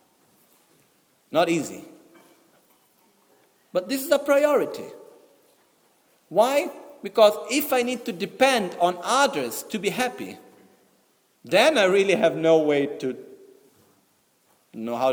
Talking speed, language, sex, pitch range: 110 wpm, Italian, male, 160-250 Hz